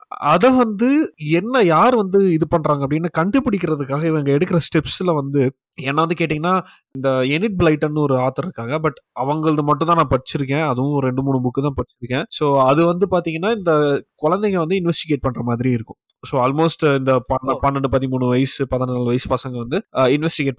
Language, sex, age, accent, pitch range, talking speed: Tamil, male, 20-39, native, 135-180 Hz, 150 wpm